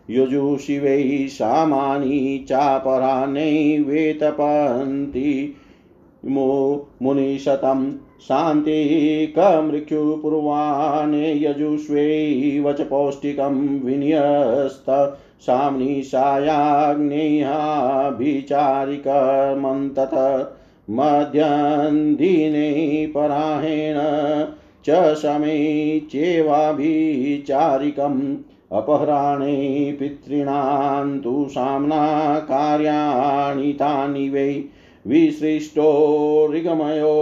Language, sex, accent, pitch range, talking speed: Hindi, male, native, 140-150 Hz, 35 wpm